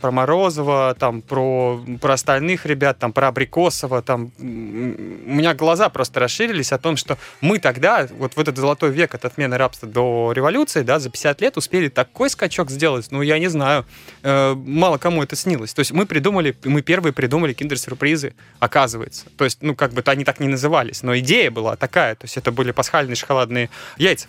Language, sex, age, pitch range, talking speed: Russian, male, 20-39, 125-155 Hz, 180 wpm